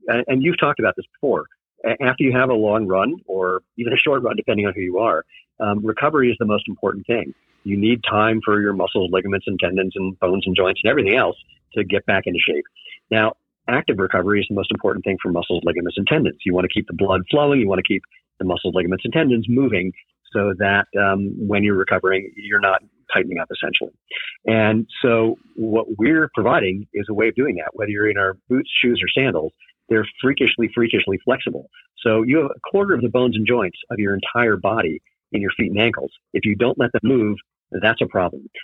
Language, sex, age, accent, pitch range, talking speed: English, male, 50-69, American, 100-120 Hz, 220 wpm